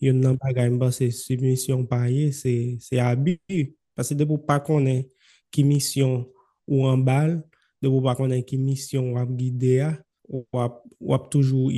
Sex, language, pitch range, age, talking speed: male, English, 125-140 Hz, 20-39, 80 wpm